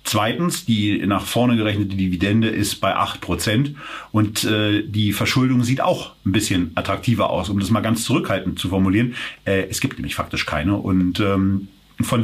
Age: 40-59